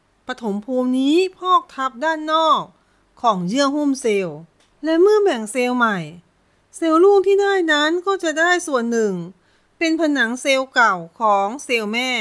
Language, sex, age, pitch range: Thai, female, 30-49, 235-325 Hz